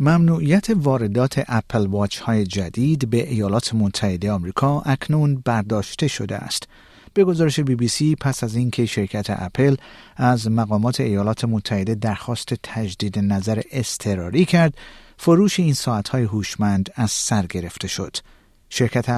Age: 50-69